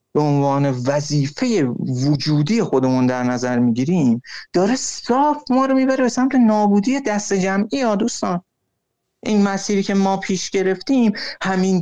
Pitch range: 135-215 Hz